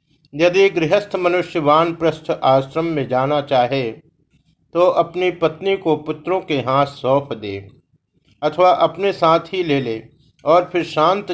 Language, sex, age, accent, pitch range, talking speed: Hindi, male, 50-69, native, 140-165 Hz, 145 wpm